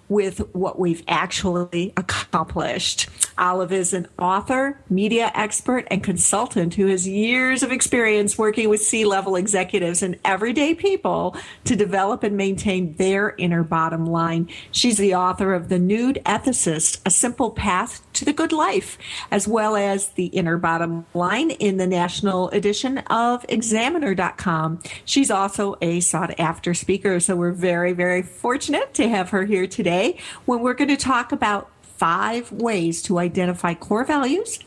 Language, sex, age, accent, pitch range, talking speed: English, female, 50-69, American, 180-225 Hz, 150 wpm